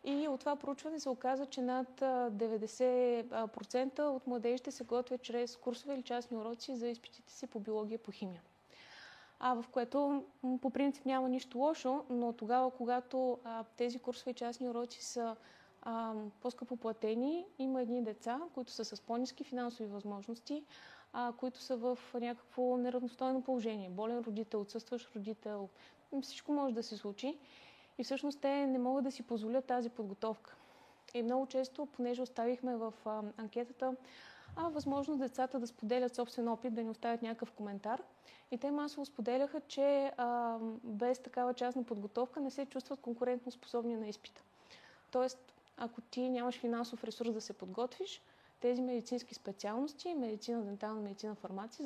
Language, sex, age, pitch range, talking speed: Bulgarian, female, 20-39, 230-260 Hz, 155 wpm